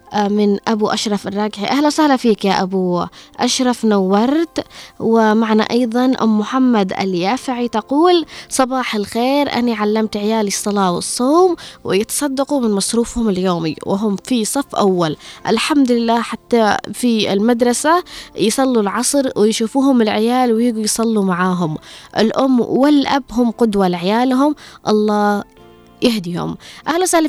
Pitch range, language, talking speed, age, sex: 200-255 Hz, Arabic, 115 wpm, 20-39, female